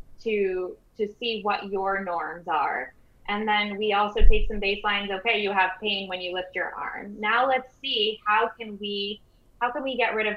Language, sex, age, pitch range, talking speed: English, female, 10-29, 185-215 Hz, 205 wpm